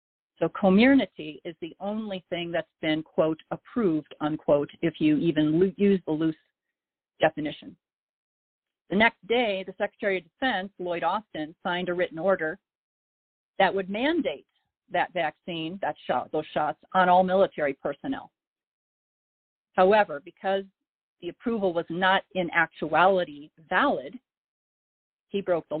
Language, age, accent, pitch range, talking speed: English, 40-59, American, 160-200 Hz, 130 wpm